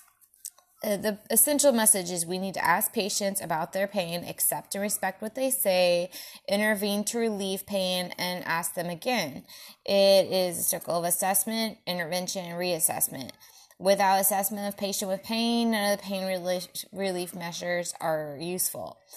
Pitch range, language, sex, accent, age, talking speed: 180-225 Hz, English, female, American, 20-39, 155 wpm